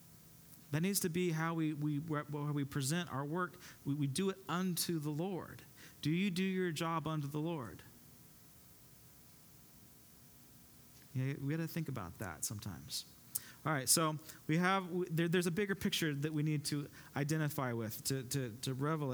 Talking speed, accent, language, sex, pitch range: 175 wpm, American, English, male, 130-160 Hz